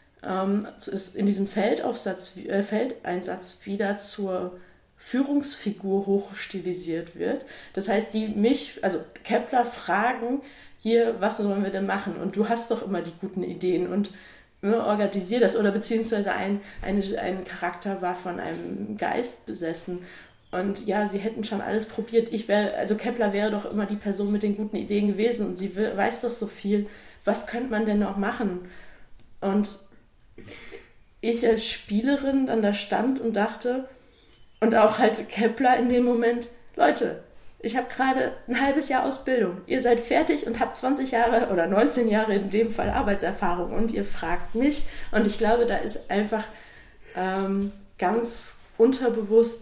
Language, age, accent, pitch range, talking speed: German, 20-39, German, 195-230 Hz, 160 wpm